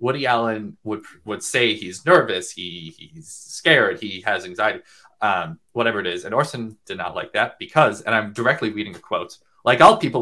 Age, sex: 20-39, male